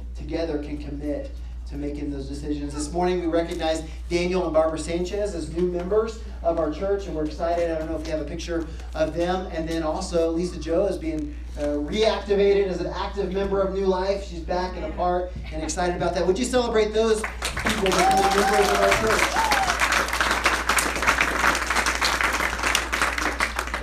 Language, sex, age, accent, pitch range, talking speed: English, male, 30-49, American, 155-195 Hz, 175 wpm